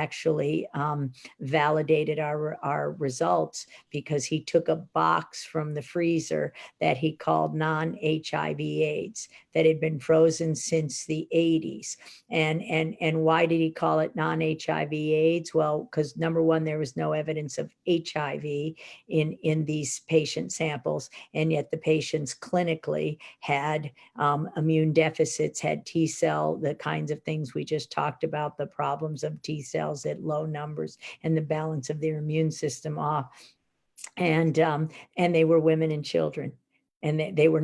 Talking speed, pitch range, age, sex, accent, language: 155 wpm, 145-160 Hz, 50-69, female, American, English